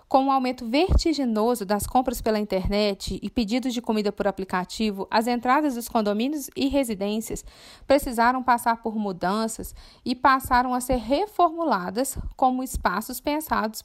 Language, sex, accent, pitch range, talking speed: Portuguese, female, Brazilian, 220-285 Hz, 140 wpm